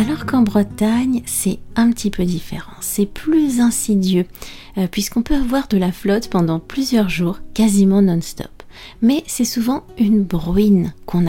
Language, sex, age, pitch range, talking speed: French, female, 40-59, 170-225 Hz, 150 wpm